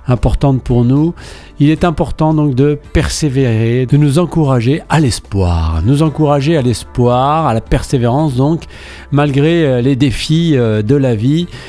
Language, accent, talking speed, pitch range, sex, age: French, French, 145 wpm, 115-145 Hz, male, 40-59